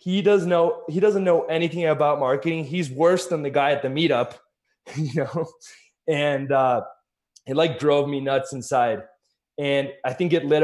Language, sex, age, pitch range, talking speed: English, male, 20-39, 130-170 Hz, 180 wpm